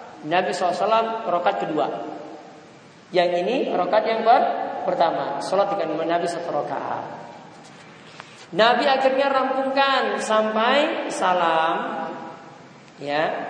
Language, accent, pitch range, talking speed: English, Indonesian, 175-245 Hz, 95 wpm